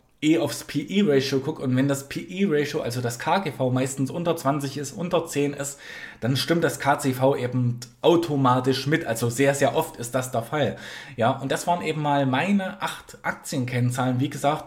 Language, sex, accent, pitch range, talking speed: German, male, German, 125-155 Hz, 180 wpm